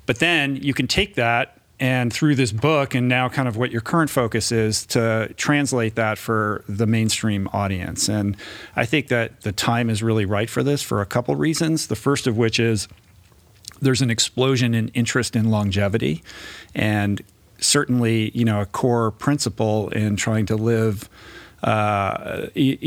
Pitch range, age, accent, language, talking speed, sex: 105-125 Hz, 40-59, American, English, 170 wpm, male